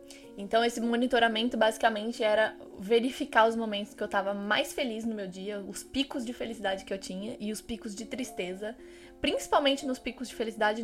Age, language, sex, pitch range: 10-29, Portuguese, female, 200-250 Hz